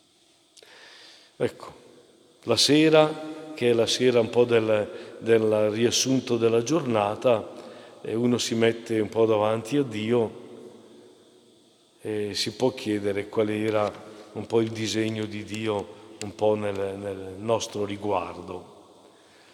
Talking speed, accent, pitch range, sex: 125 wpm, native, 105-145 Hz, male